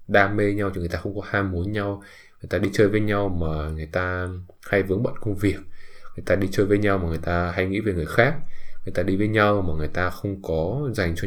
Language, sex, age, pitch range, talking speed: English, male, 20-39, 85-100 Hz, 270 wpm